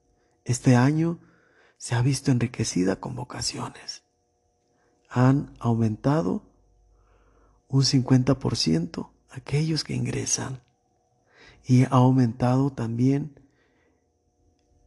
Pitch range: 115-135 Hz